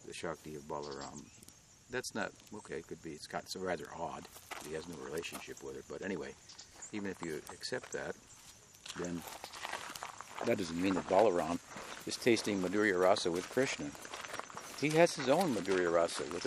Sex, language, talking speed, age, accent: male, English, 170 wpm, 60-79, American